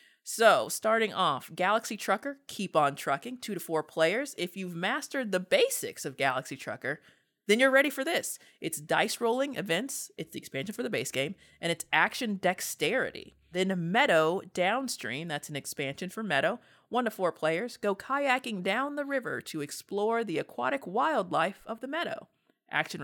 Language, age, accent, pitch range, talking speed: English, 30-49, American, 160-245 Hz, 170 wpm